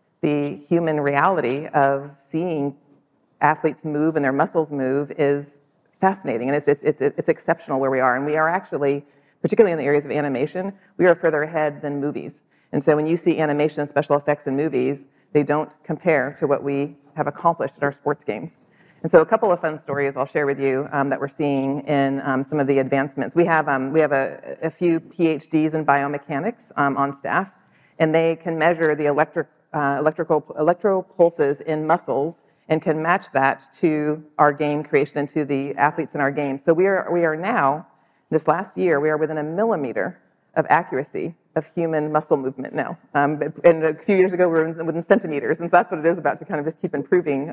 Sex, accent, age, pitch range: female, American, 40-59, 145-160 Hz